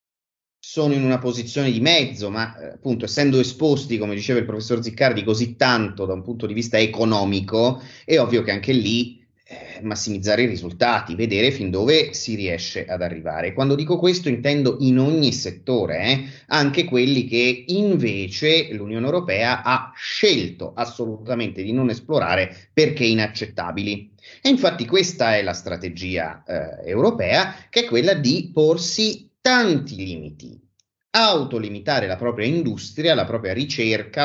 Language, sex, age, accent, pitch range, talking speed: Italian, male, 30-49, native, 105-140 Hz, 145 wpm